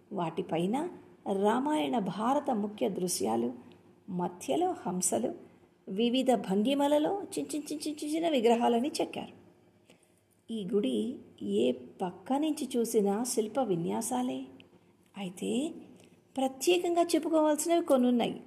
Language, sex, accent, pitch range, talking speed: Telugu, female, native, 210-295 Hz, 80 wpm